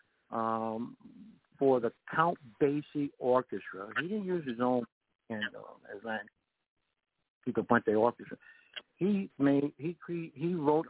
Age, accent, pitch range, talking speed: 60-79, American, 120-145 Hz, 125 wpm